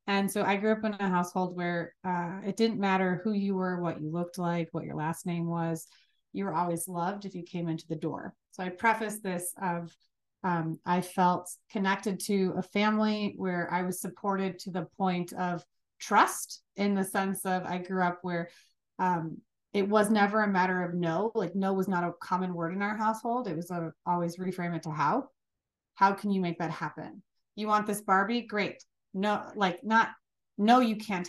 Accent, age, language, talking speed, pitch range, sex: American, 30-49, English, 205 wpm, 175-200 Hz, female